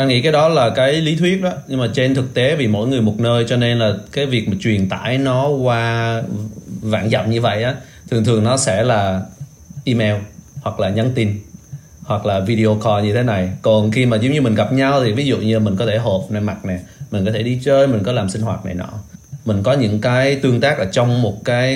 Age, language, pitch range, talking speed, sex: 20-39, Vietnamese, 105-130 Hz, 255 wpm, male